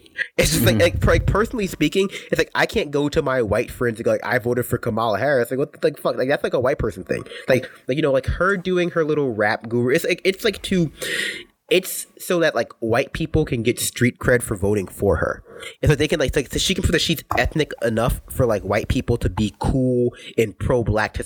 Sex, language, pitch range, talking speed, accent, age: male, English, 105-150 Hz, 250 wpm, American, 20-39